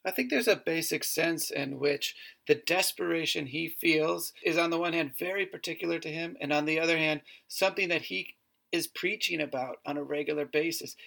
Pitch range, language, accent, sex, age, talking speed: 145-190 Hz, English, American, male, 40-59, 195 wpm